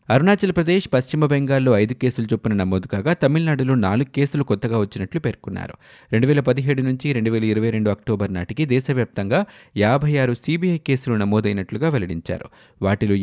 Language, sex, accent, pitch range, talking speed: Telugu, male, native, 105-140 Hz, 150 wpm